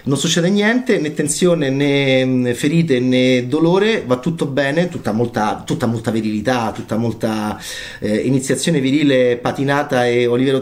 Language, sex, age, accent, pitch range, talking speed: Italian, male, 30-49, native, 115-145 Hz, 135 wpm